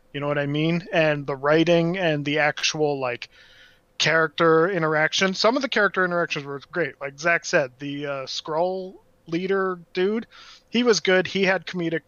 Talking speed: 175 wpm